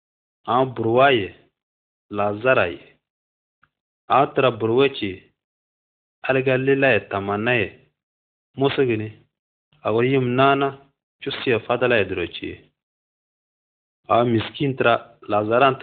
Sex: male